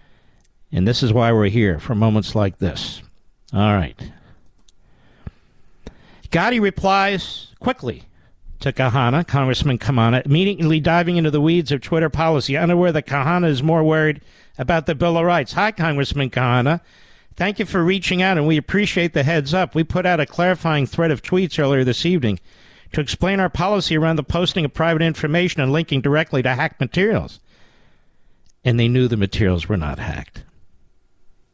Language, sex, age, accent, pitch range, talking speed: English, male, 50-69, American, 125-175 Hz, 165 wpm